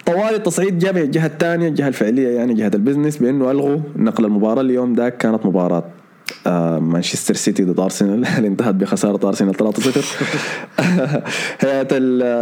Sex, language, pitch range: male, Arabic, 105-150 Hz